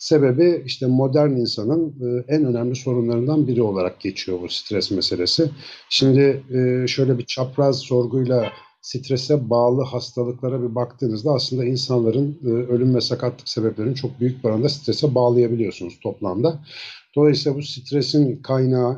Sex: male